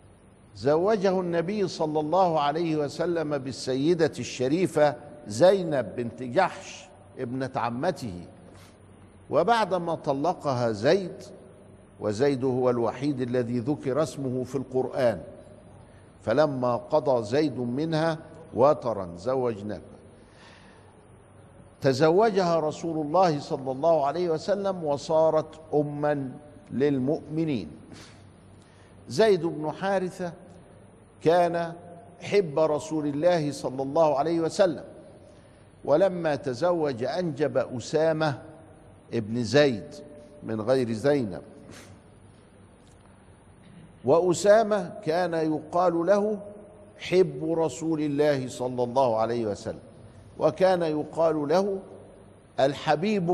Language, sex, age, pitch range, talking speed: Arabic, male, 60-79, 115-165 Hz, 85 wpm